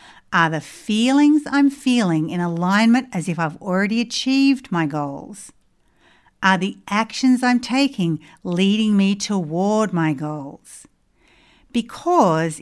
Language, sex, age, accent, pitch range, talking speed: English, female, 60-79, Australian, 175-245 Hz, 120 wpm